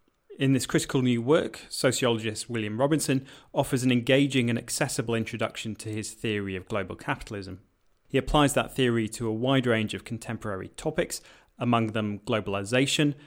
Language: English